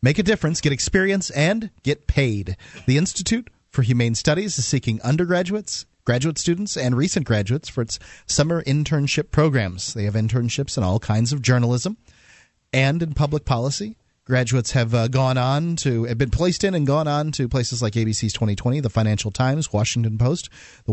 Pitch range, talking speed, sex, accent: 115-150 Hz, 180 wpm, male, American